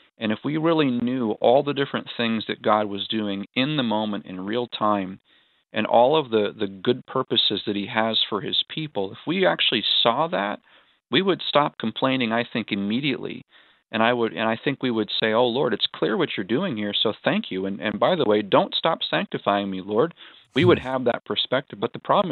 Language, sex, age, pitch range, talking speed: English, male, 40-59, 105-125 Hz, 220 wpm